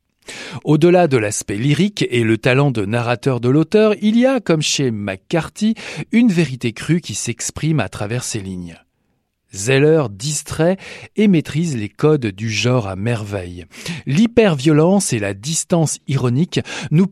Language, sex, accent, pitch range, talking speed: French, male, French, 110-165 Hz, 145 wpm